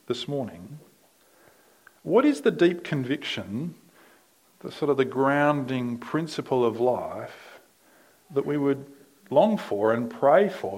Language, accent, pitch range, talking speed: English, Australian, 115-140 Hz, 130 wpm